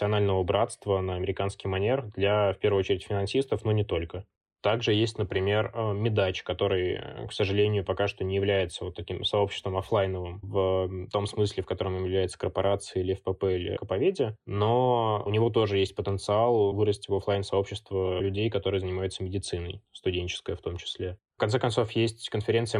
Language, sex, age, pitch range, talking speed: Russian, male, 20-39, 95-110 Hz, 160 wpm